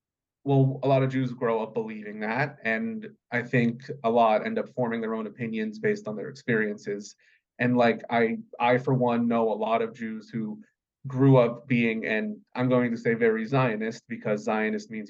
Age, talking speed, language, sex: 30-49, 195 wpm, English, male